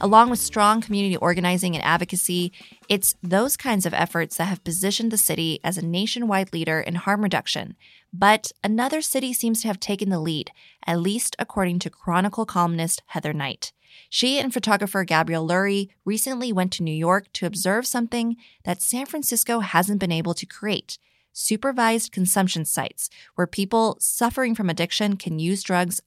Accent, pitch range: American, 175-220 Hz